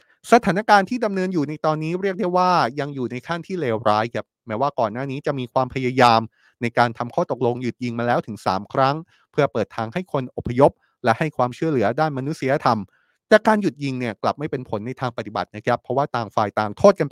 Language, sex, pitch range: Thai, male, 120-160 Hz